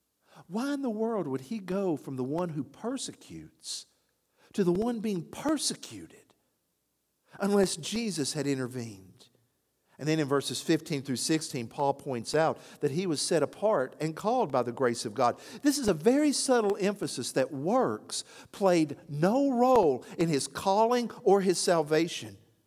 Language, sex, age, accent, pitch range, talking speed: English, male, 50-69, American, 160-245 Hz, 160 wpm